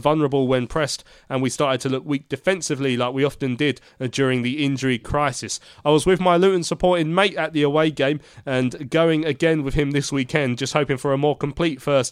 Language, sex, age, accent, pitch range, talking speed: English, male, 30-49, British, 130-160 Hz, 220 wpm